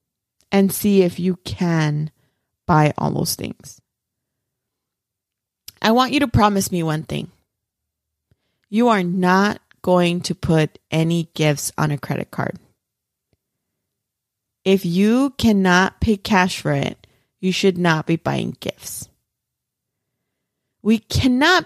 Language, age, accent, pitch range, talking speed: English, 30-49, American, 150-210 Hz, 120 wpm